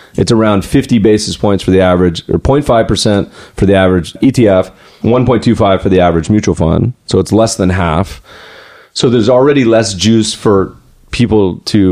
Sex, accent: male, American